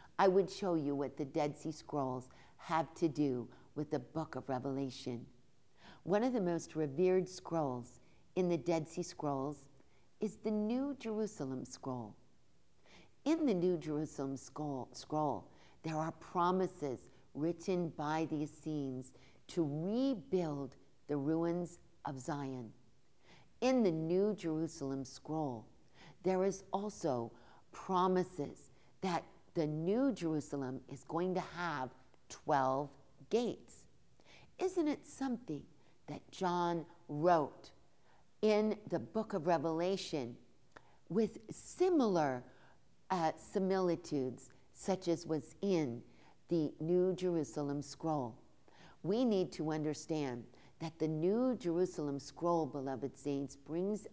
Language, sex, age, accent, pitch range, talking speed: English, female, 50-69, American, 140-185 Hz, 120 wpm